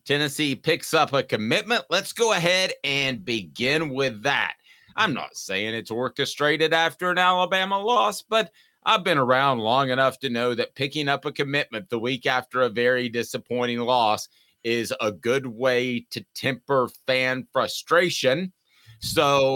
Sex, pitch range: male, 120-150 Hz